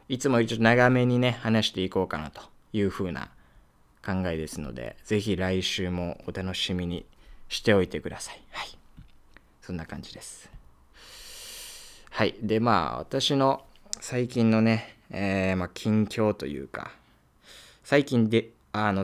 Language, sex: Japanese, male